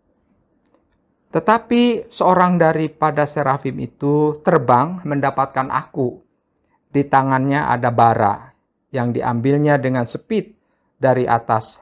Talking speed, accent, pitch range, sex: 90 wpm, native, 130-195 Hz, male